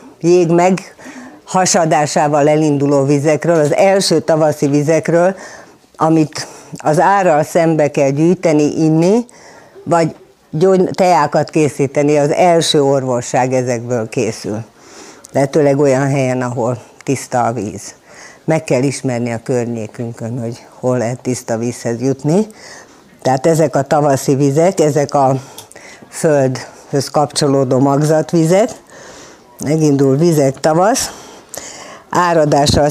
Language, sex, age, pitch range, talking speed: Hungarian, female, 50-69, 135-165 Hz, 100 wpm